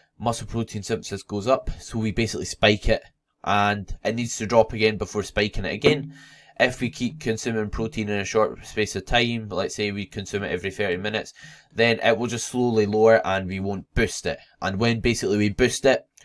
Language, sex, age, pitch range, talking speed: English, male, 10-29, 100-120 Hz, 205 wpm